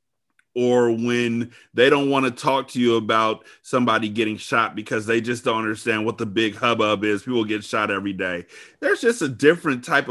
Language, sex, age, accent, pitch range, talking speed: English, male, 30-49, American, 105-130 Hz, 195 wpm